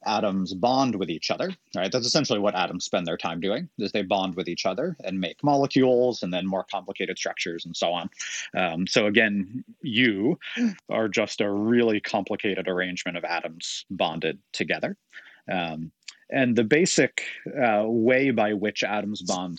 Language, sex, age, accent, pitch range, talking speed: English, male, 30-49, American, 95-130 Hz, 170 wpm